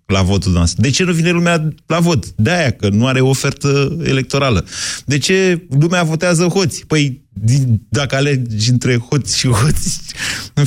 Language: Romanian